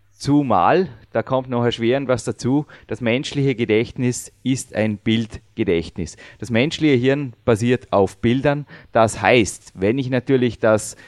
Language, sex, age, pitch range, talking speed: German, male, 30-49, 115-145 Hz, 140 wpm